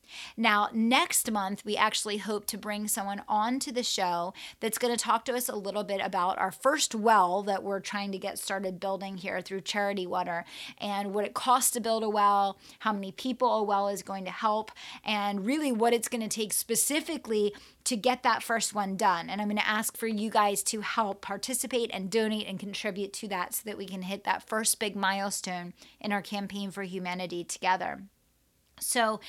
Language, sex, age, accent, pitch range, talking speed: English, female, 30-49, American, 195-225 Hz, 205 wpm